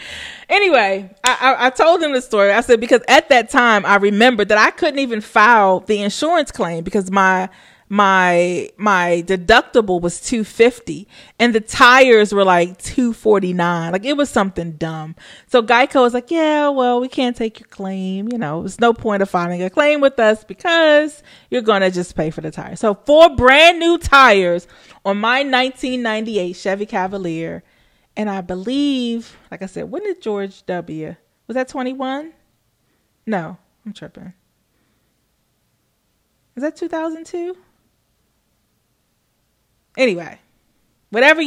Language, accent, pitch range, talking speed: English, American, 190-255 Hz, 150 wpm